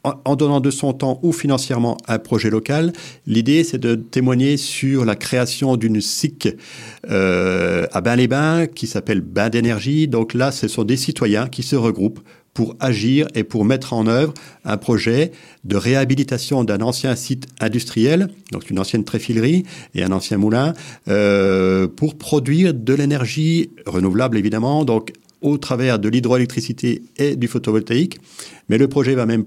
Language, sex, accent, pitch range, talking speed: French, male, French, 105-135 Hz, 165 wpm